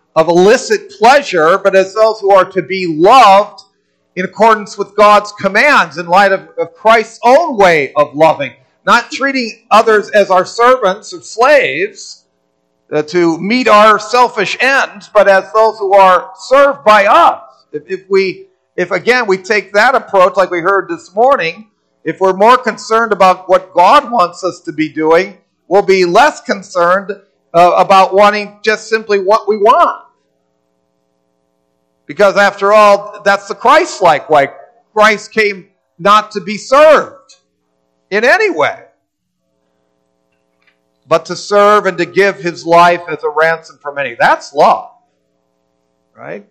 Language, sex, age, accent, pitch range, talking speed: English, male, 50-69, American, 155-210 Hz, 150 wpm